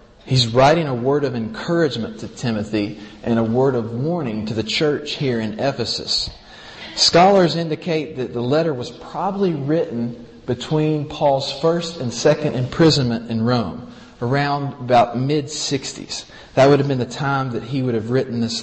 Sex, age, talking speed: male, 40-59, 160 wpm